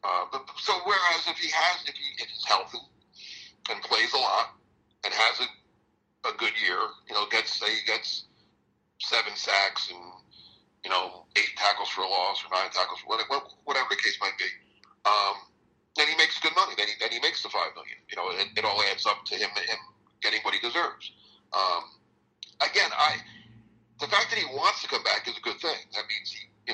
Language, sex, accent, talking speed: English, male, American, 210 wpm